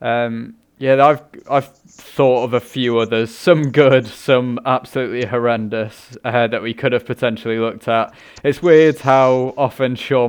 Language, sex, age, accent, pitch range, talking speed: English, male, 20-39, British, 110-125 Hz, 155 wpm